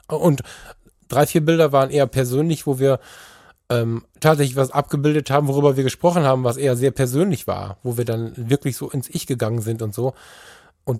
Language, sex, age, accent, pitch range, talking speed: German, male, 10-29, German, 105-140 Hz, 190 wpm